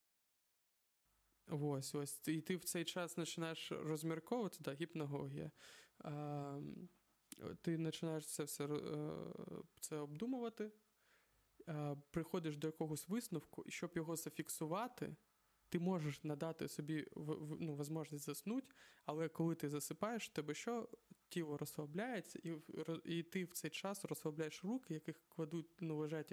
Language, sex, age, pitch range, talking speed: Ukrainian, male, 20-39, 155-185 Hz, 125 wpm